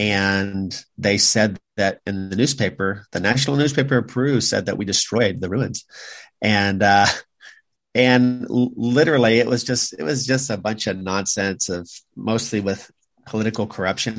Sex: male